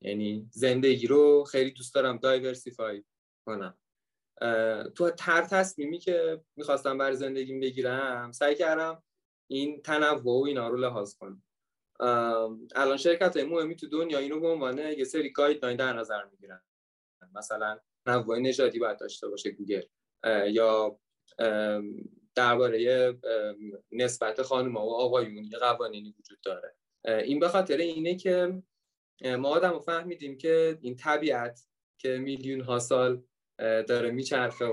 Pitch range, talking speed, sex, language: 120-155 Hz, 125 wpm, male, Persian